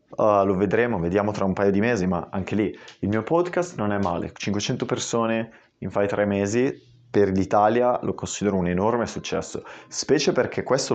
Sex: male